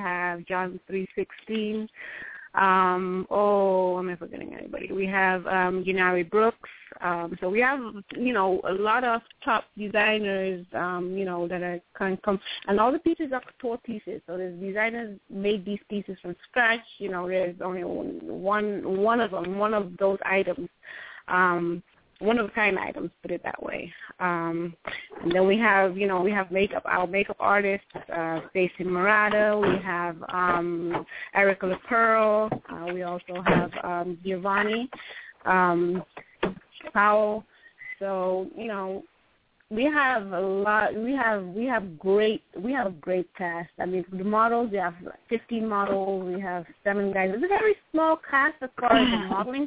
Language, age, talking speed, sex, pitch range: English, 20-39, 165 wpm, female, 180-215 Hz